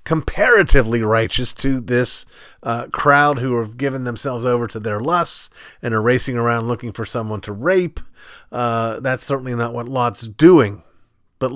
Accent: American